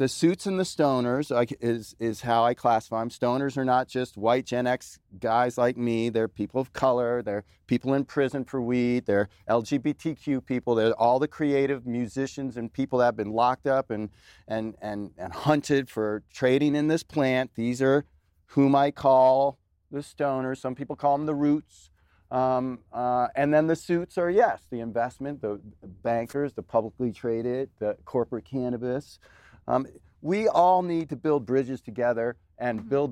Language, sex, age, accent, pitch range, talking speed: English, male, 40-59, American, 115-135 Hz, 175 wpm